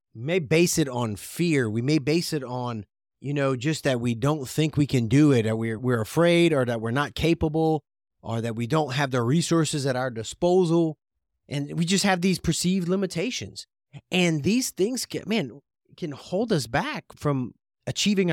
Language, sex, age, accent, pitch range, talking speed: English, male, 30-49, American, 120-170 Hz, 190 wpm